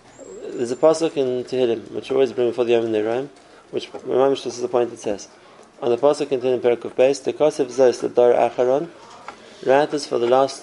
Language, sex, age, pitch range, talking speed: English, male, 20-39, 120-140 Hz, 235 wpm